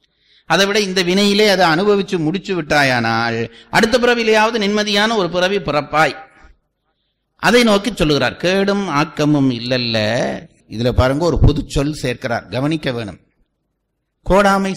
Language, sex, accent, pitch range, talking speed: Tamil, male, native, 145-205 Hz, 120 wpm